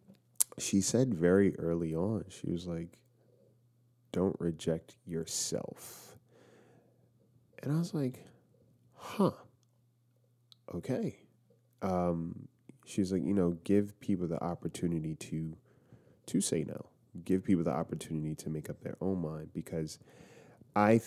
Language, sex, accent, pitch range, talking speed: English, male, American, 80-115 Hz, 120 wpm